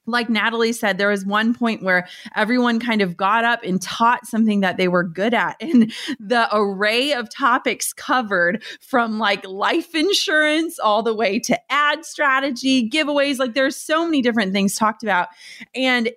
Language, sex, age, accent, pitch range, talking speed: English, female, 30-49, American, 195-245 Hz, 175 wpm